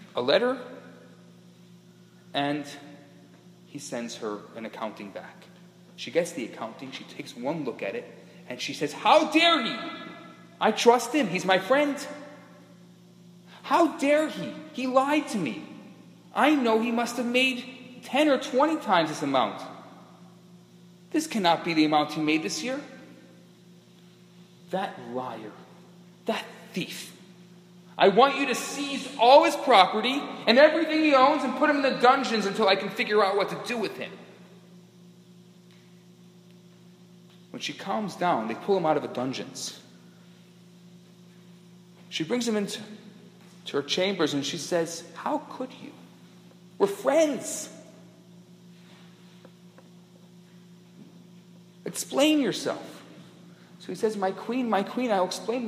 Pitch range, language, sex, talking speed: 175-245 Hz, English, male, 140 wpm